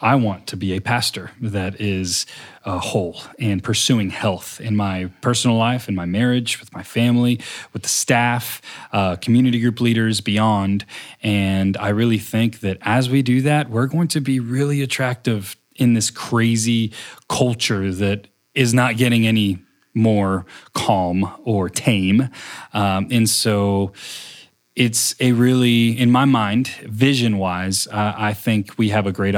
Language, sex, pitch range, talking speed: English, male, 100-125 Hz, 155 wpm